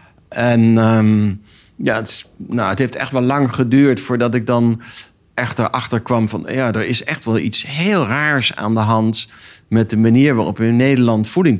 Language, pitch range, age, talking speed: Dutch, 105-130 Hz, 60-79, 180 wpm